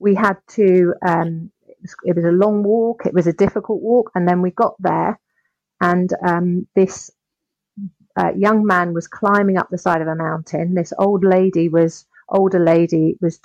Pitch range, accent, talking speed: 170-200 Hz, British, 190 wpm